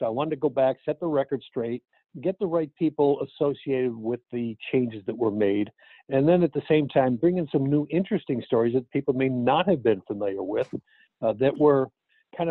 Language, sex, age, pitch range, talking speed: English, male, 60-79, 120-150 Hz, 215 wpm